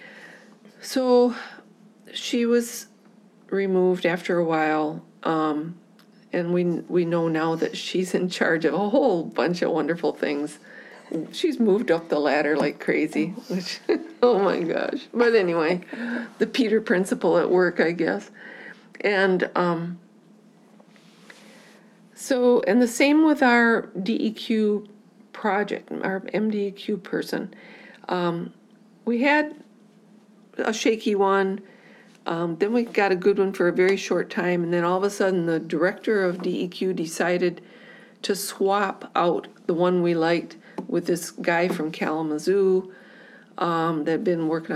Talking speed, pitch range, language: 145 wpm, 170-220 Hz, English